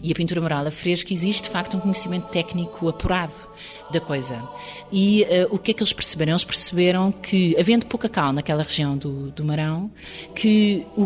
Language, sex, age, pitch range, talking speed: Portuguese, female, 30-49, 155-200 Hz, 195 wpm